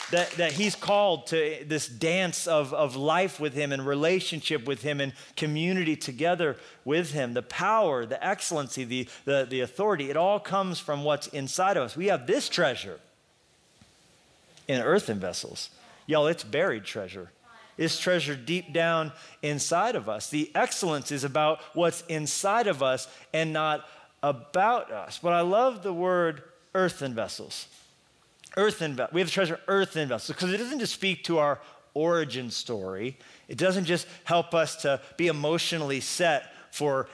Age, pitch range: 40-59, 145-175 Hz